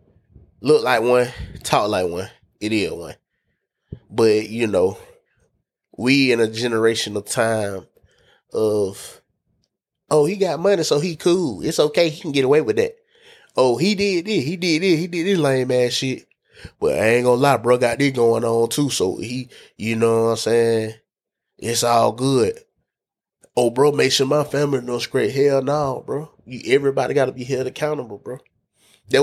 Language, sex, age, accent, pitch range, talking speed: English, male, 20-39, American, 115-150 Hz, 175 wpm